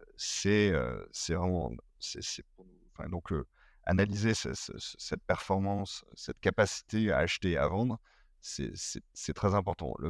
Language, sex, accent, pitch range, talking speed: French, male, French, 85-105 Hz, 165 wpm